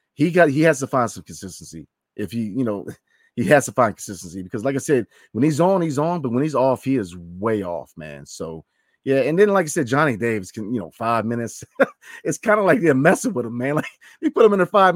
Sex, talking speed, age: male, 270 wpm, 30-49